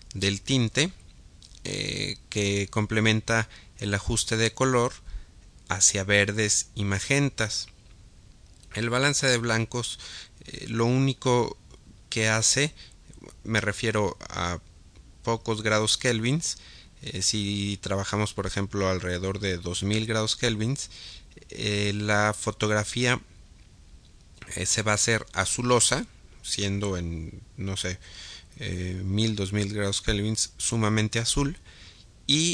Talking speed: 110 wpm